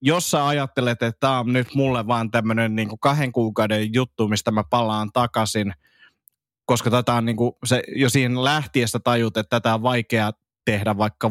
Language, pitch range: Finnish, 110-130 Hz